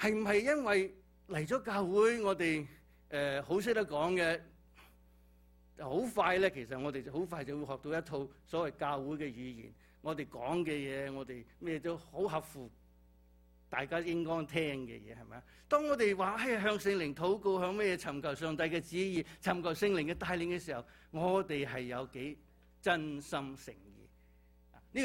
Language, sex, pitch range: English, male, 120-175 Hz